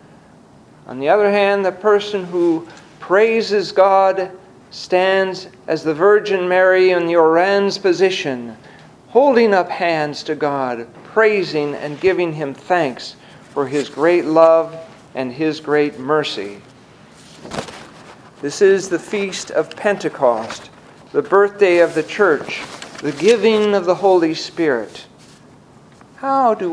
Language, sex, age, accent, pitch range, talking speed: English, male, 50-69, American, 155-200 Hz, 125 wpm